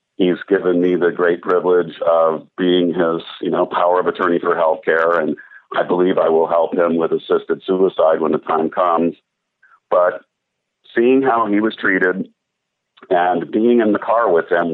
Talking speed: 180 wpm